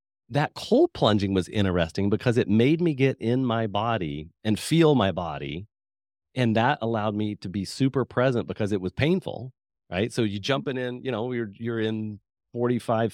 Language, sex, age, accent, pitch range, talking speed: English, male, 40-59, American, 100-125 Hz, 185 wpm